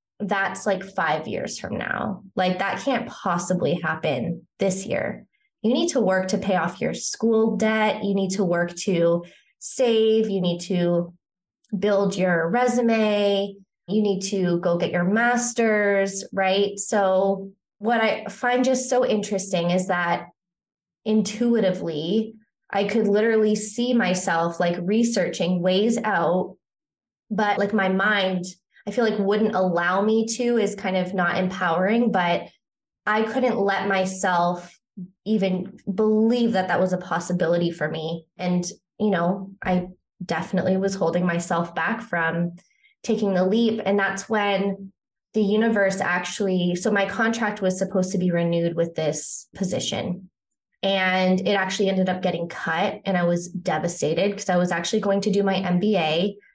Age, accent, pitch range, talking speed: 20-39, American, 180-215 Hz, 150 wpm